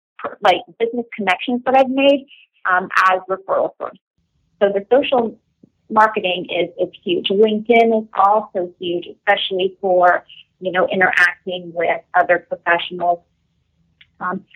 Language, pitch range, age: English, 185-220 Hz, 30-49